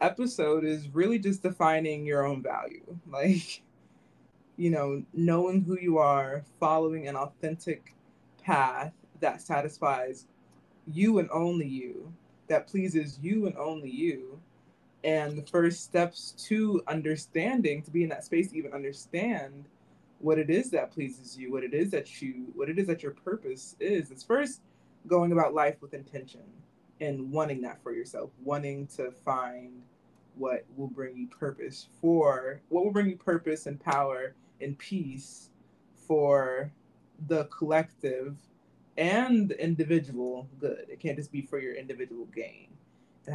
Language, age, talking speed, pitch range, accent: English, 20-39, 150 wpm, 135-170 Hz, American